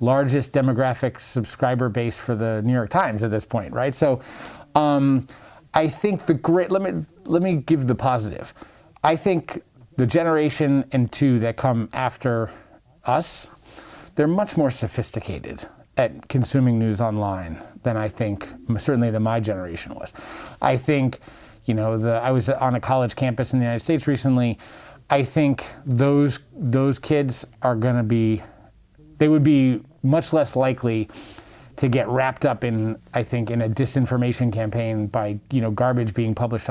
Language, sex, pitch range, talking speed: Slovak, male, 115-140 Hz, 160 wpm